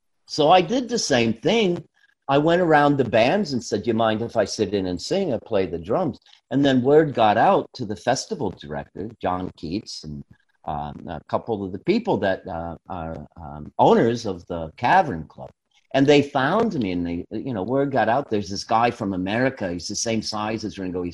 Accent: American